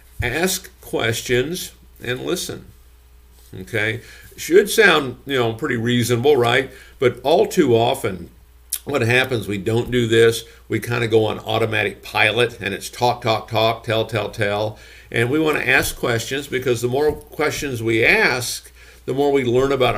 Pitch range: 105-135 Hz